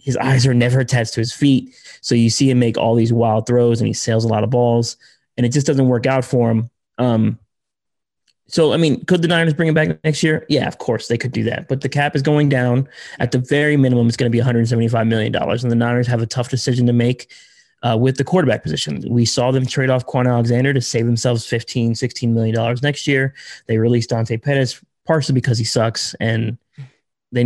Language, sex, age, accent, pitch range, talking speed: English, male, 20-39, American, 115-140 Hz, 230 wpm